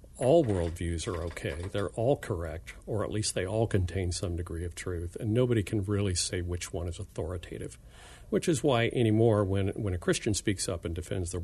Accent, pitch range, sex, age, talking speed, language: American, 90-115 Hz, male, 50-69, 205 wpm, English